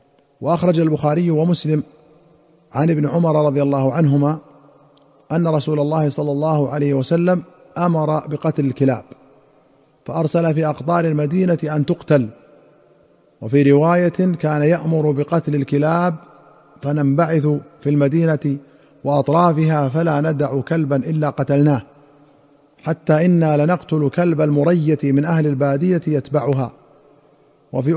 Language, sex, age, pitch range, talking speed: Arabic, male, 40-59, 145-170 Hz, 105 wpm